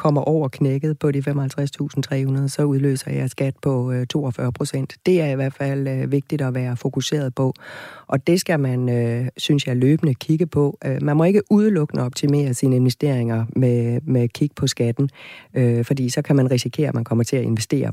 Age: 30-49